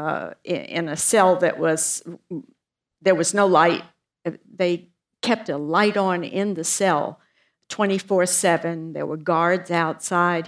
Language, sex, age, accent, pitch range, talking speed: English, female, 60-79, American, 170-210 Hz, 135 wpm